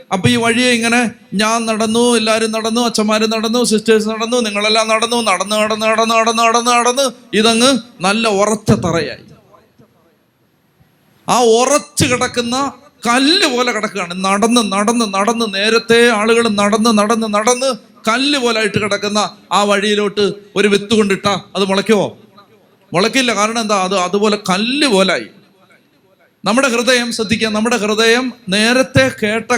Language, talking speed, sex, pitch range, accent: Malayalam, 120 wpm, male, 195-235 Hz, native